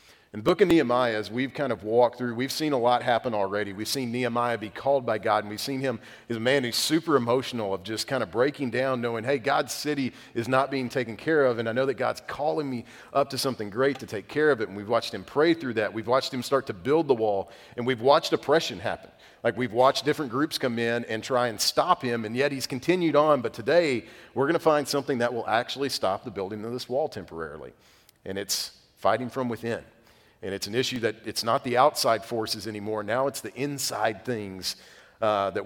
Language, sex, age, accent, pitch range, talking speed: English, male, 40-59, American, 110-135 Hz, 240 wpm